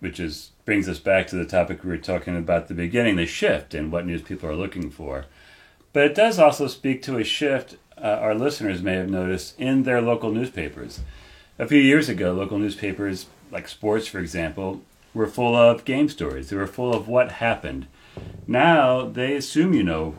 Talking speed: 200 wpm